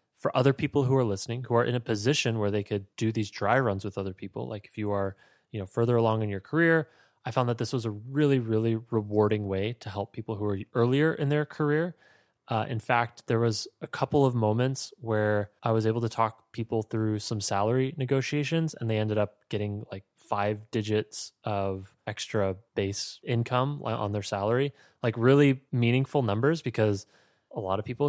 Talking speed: 205 wpm